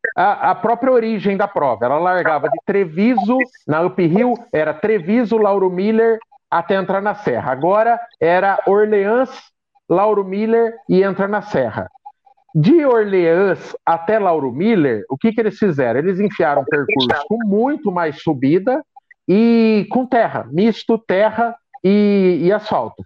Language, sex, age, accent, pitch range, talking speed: Portuguese, male, 50-69, Brazilian, 180-235 Hz, 145 wpm